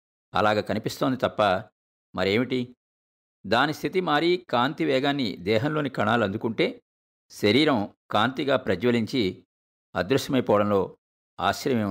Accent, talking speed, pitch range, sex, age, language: native, 85 wpm, 90-130 Hz, male, 50-69, Telugu